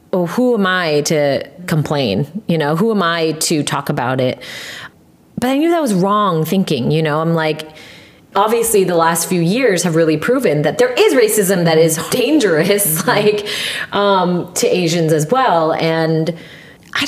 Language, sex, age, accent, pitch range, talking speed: English, female, 30-49, American, 155-195 Hz, 170 wpm